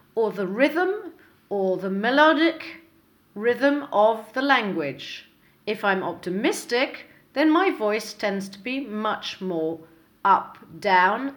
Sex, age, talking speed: female, 40-59, 120 wpm